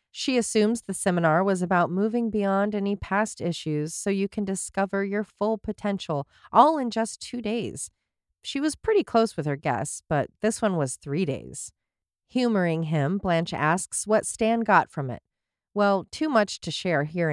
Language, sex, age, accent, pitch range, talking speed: English, female, 40-59, American, 170-230 Hz, 175 wpm